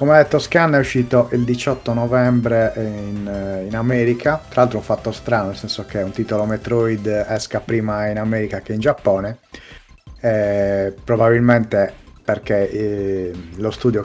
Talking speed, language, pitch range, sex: 155 wpm, Italian, 100-120 Hz, male